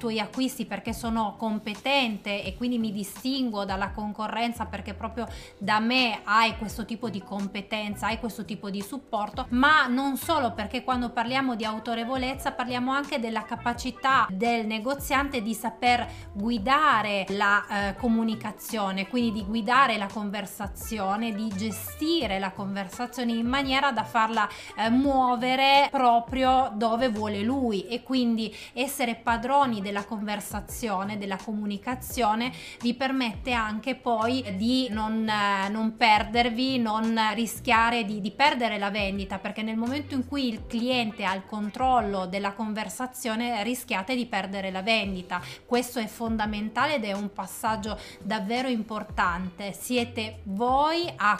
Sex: female